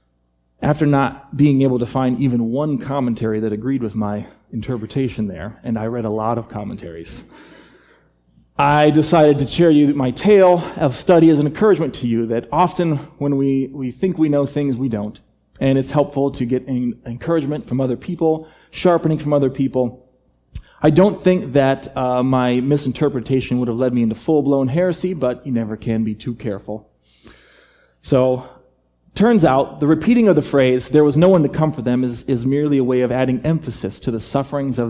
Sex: male